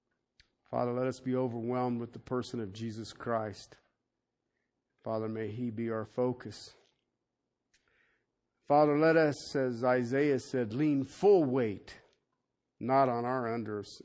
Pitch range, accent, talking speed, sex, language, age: 110-125 Hz, American, 130 wpm, male, English, 50-69